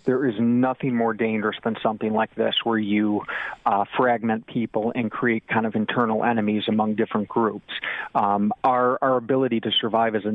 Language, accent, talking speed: English, American, 180 wpm